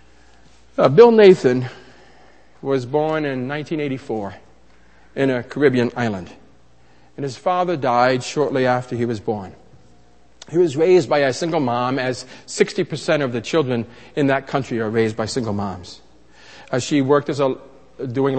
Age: 50-69